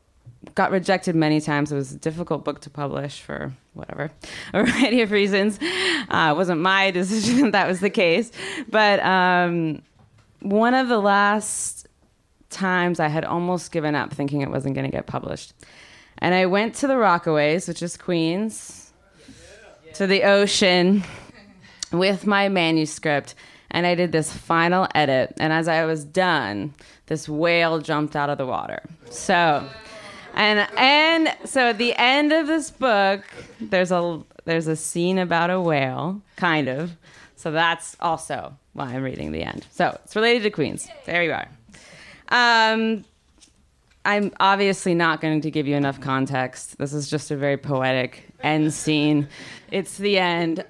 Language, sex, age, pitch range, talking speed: English, female, 20-39, 150-205 Hz, 160 wpm